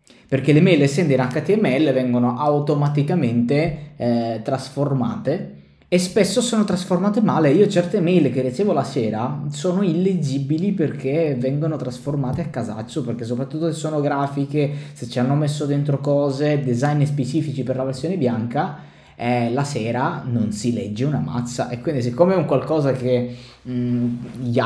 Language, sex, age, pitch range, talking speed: Italian, male, 20-39, 120-145 Hz, 150 wpm